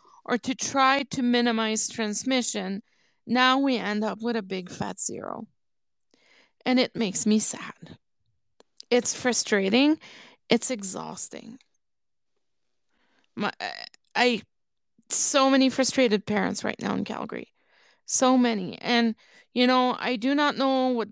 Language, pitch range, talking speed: English, 210-250 Hz, 125 wpm